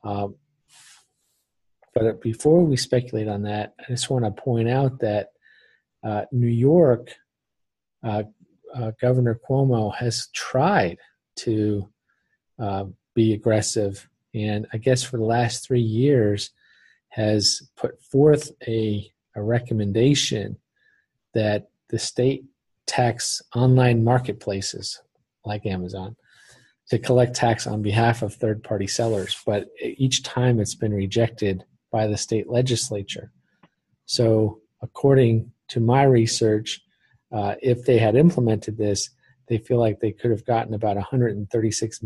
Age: 40-59